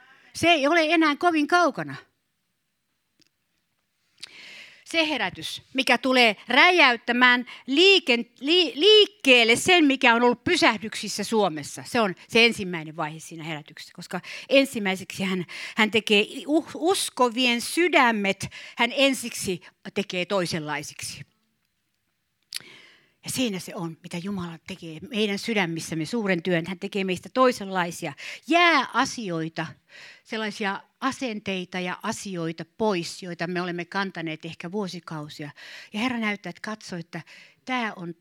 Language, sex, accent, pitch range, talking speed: Finnish, female, native, 180-250 Hz, 110 wpm